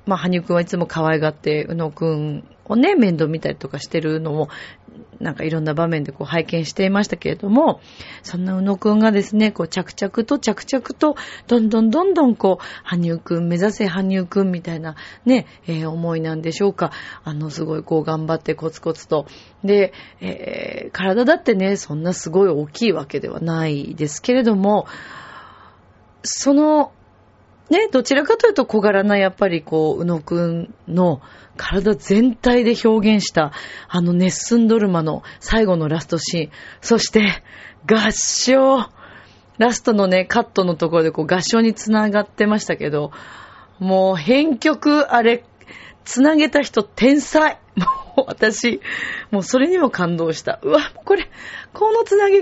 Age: 30-49